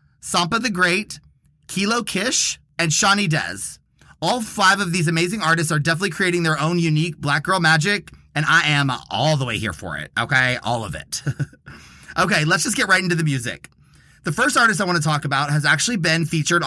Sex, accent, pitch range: male, American, 135-175 Hz